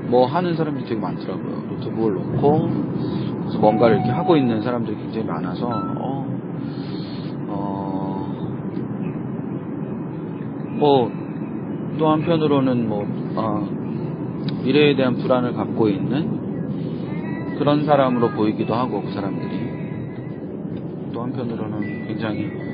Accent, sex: native, male